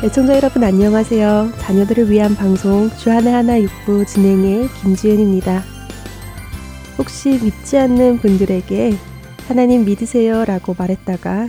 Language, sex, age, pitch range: Korean, female, 20-39, 195-235 Hz